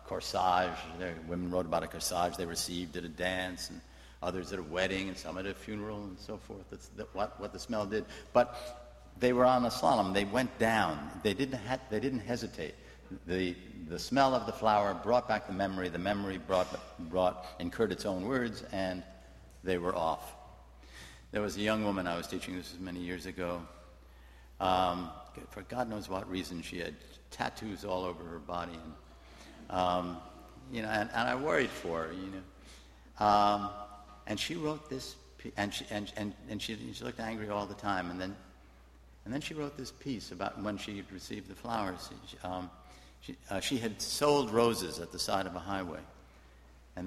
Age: 60-79